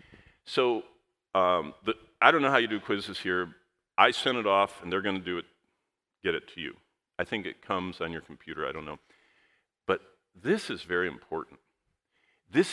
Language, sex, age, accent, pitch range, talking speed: English, male, 50-69, American, 105-165 Hz, 195 wpm